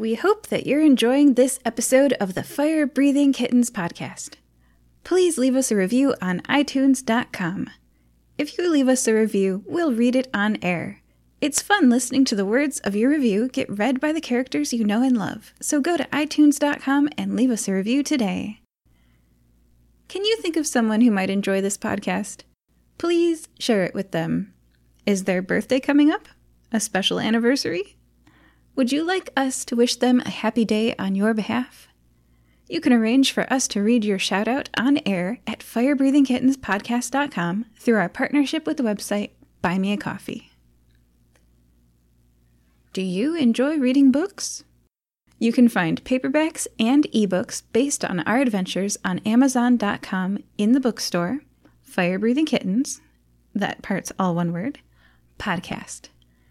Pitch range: 190-270 Hz